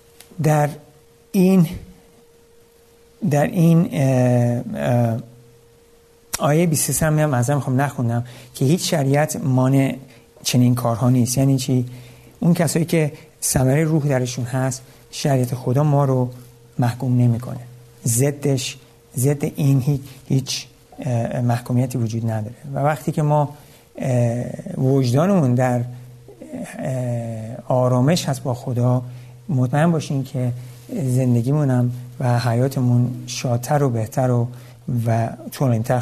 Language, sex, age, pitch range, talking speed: Persian, male, 60-79, 125-145 Hz, 100 wpm